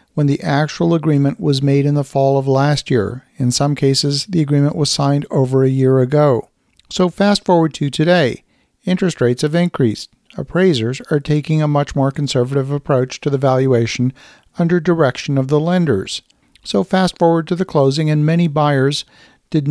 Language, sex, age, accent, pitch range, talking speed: English, male, 50-69, American, 135-160 Hz, 175 wpm